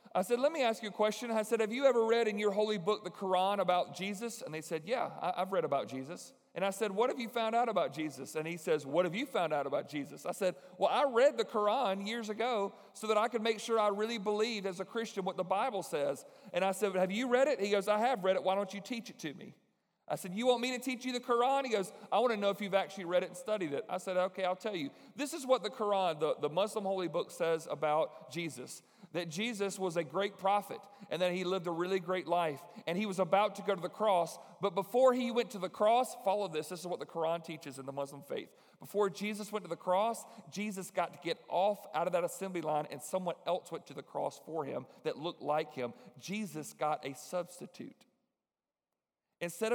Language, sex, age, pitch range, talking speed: English, male, 40-59, 175-220 Hz, 255 wpm